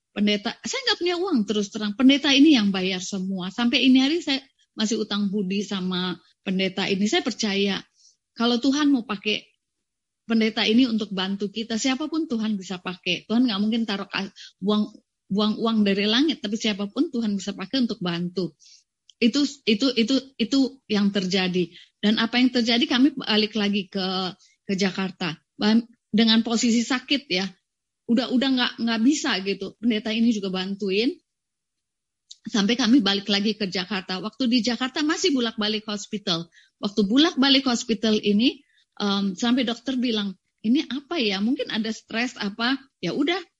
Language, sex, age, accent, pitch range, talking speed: Indonesian, female, 30-49, native, 200-260 Hz, 155 wpm